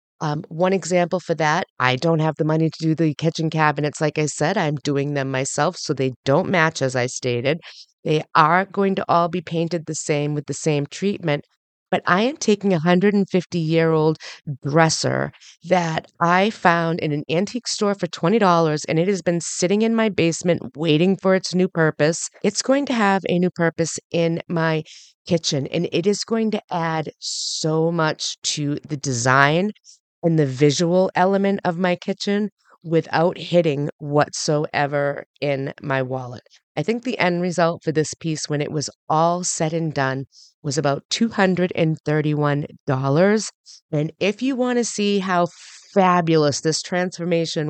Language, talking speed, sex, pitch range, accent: English, 170 wpm, female, 150-185 Hz, American